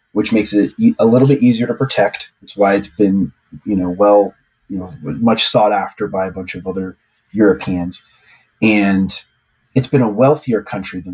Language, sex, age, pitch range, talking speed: English, male, 30-49, 90-115 Hz, 190 wpm